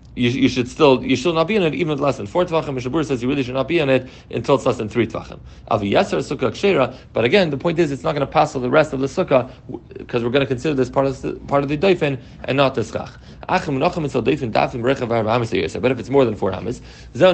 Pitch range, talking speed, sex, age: 125-155 Hz, 235 wpm, male, 40-59